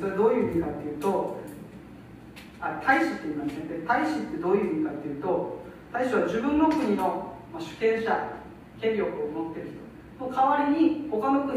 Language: Japanese